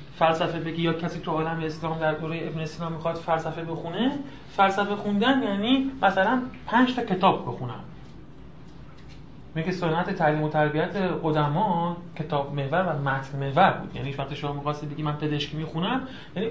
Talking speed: 160 wpm